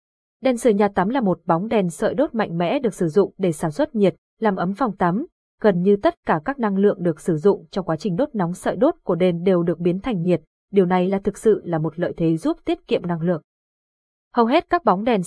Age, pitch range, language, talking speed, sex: 20-39, 185-230 Hz, Vietnamese, 260 wpm, female